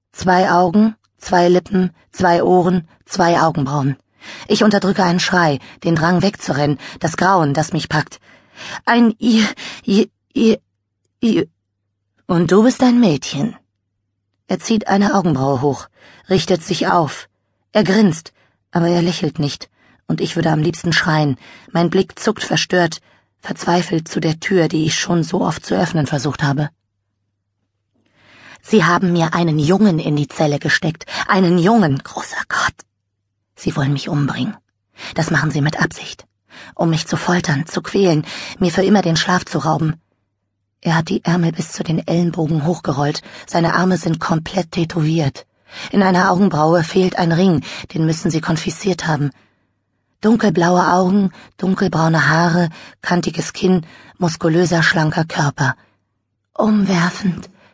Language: German